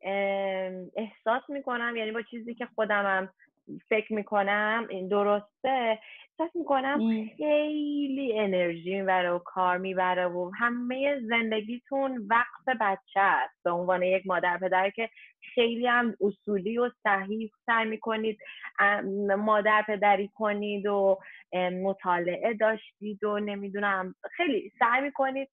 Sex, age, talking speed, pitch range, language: female, 20-39, 125 wpm, 190-235 Hz, Persian